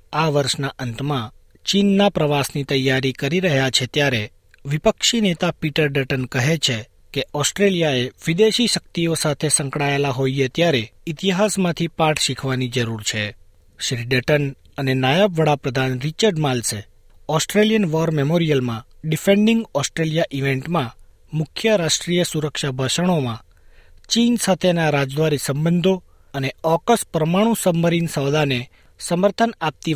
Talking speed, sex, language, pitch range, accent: 115 wpm, male, Gujarati, 130-170 Hz, native